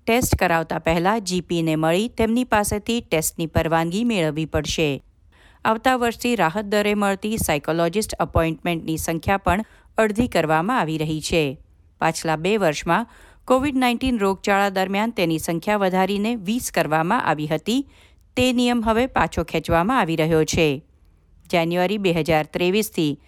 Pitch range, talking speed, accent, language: 160-215 Hz, 95 wpm, native, Gujarati